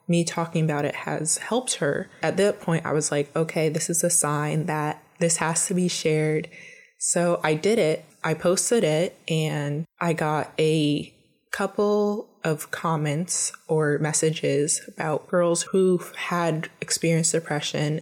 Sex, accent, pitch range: female, American, 150-175 Hz